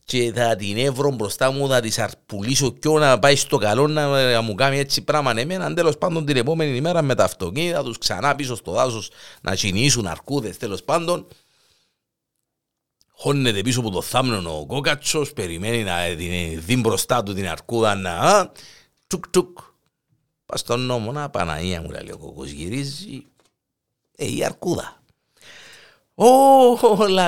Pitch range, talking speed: 110-170 Hz, 150 wpm